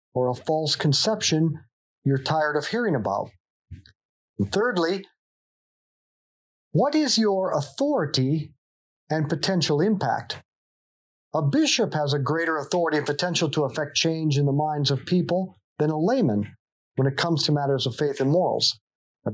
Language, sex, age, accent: English, male, 40-59, American